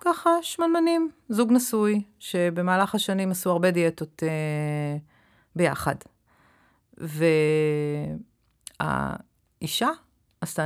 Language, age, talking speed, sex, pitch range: Hebrew, 40-59, 75 wpm, female, 155-195 Hz